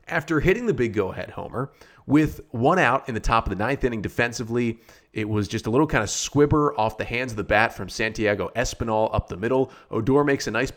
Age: 30-49